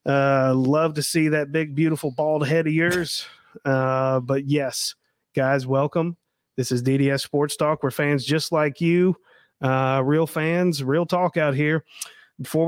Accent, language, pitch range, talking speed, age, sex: American, English, 140-175 Hz, 160 wpm, 30-49, male